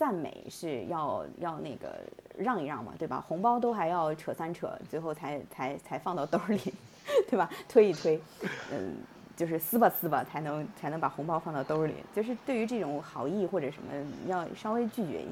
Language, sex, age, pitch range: Chinese, female, 20-39, 150-200 Hz